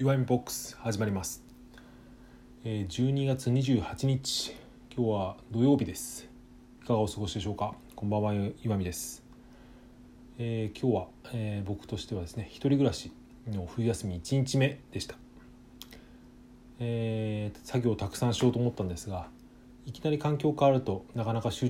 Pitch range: 100-125 Hz